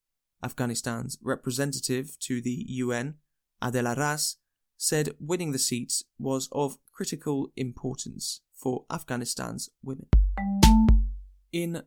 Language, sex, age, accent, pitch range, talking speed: English, male, 20-39, British, 120-150 Hz, 95 wpm